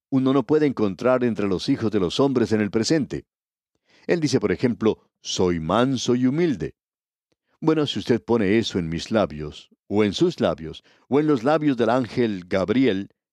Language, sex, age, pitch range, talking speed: Spanish, male, 60-79, 105-140 Hz, 180 wpm